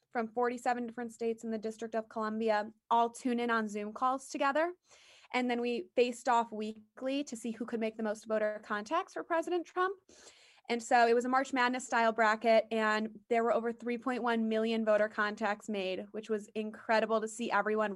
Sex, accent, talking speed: female, American, 195 wpm